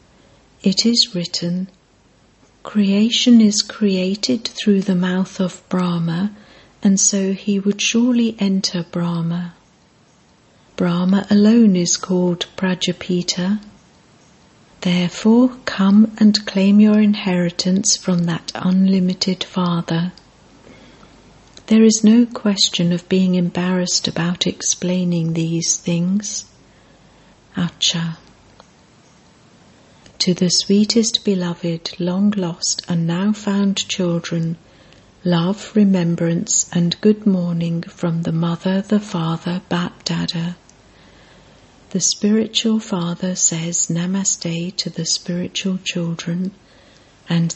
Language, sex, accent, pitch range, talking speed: English, female, British, 175-205 Hz, 95 wpm